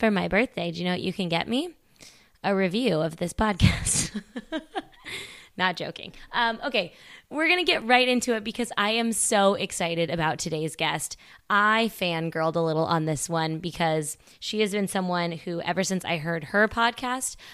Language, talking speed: English, 180 wpm